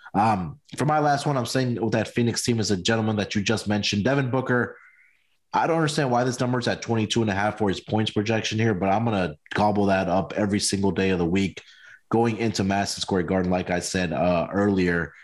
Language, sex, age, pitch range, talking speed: English, male, 20-39, 105-130 Hz, 230 wpm